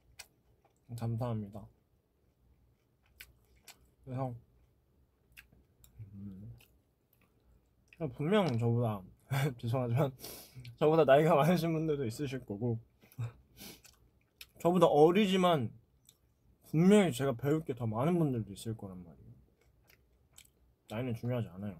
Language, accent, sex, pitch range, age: Korean, native, male, 95-125 Hz, 20-39